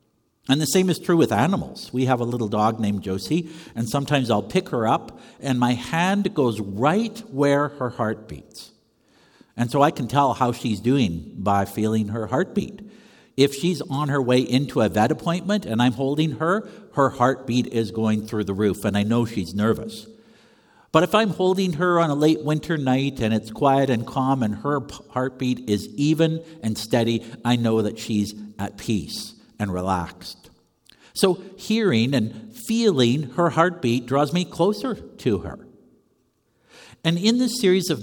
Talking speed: 175 wpm